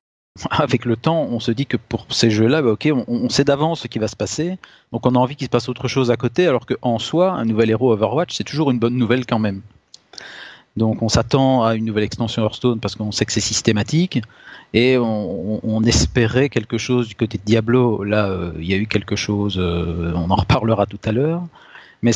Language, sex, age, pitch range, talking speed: French, male, 40-59, 105-125 Hz, 235 wpm